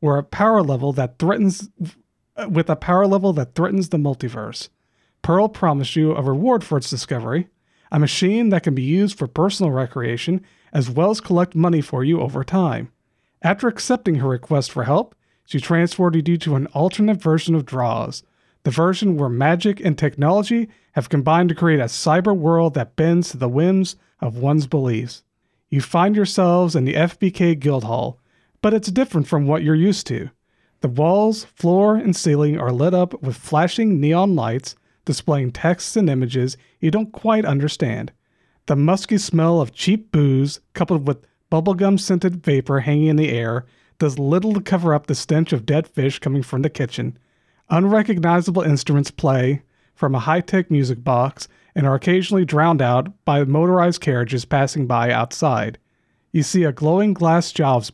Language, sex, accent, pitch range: English, male, American, 140-185 Hz